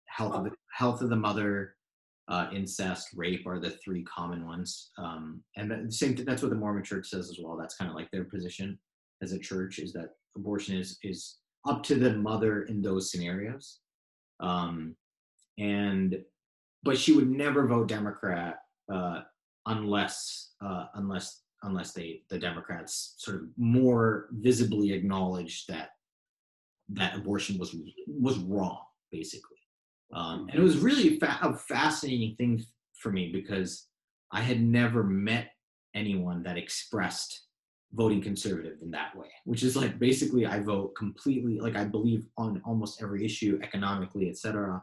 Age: 30-49